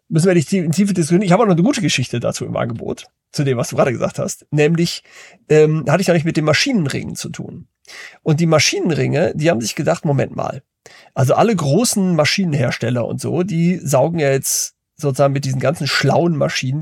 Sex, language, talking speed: male, German, 215 wpm